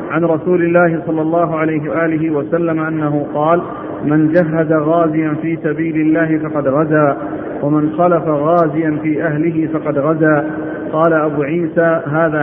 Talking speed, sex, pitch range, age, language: 140 wpm, male, 155-170 Hz, 50-69, Arabic